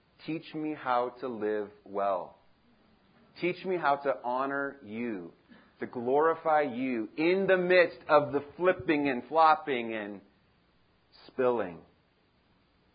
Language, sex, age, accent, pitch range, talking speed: English, male, 30-49, American, 110-150 Hz, 115 wpm